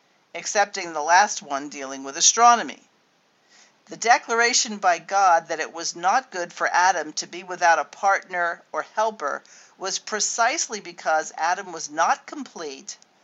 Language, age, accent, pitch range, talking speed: English, 50-69, American, 160-220 Hz, 145 wpm